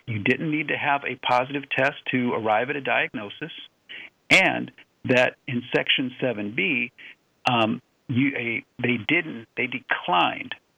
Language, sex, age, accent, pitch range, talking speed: English, male, 50-69, American, 115-140 Hz, 120 wpm